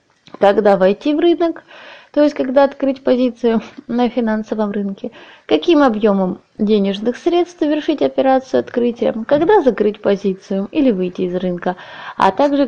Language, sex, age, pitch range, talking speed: Russian, female, 20-39, 215-285 Hz, 135 wpm